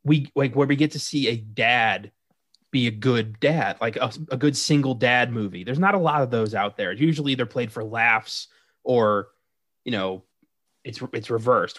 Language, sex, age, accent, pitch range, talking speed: English, male, 20-39, American, 115-150 Hz, 200 wpm